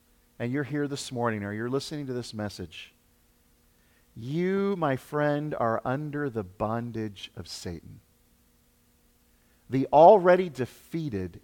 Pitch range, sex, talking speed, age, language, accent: 90-155 Hz, male, 120 wpm, 40-59, English, American